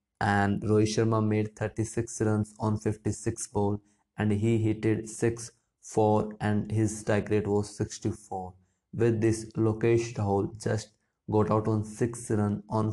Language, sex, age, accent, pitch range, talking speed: English, male, 20-39, Indian, 100-110 Hz, 145 wpm